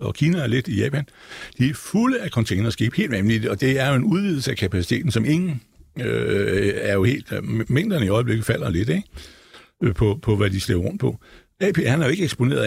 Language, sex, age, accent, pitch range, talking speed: Danish, male, 60-79, native, 100-145 Hz, 210 wpm